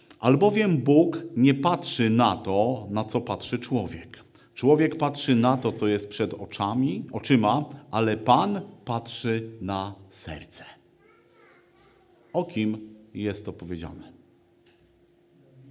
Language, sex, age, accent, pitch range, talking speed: Polish, male, 50-69, native, 110-145 Hz, 105 wpm